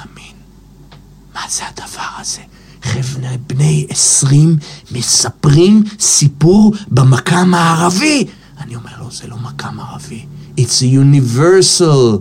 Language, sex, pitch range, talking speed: Hebrew, male, 115-160 Hz, 105 wpm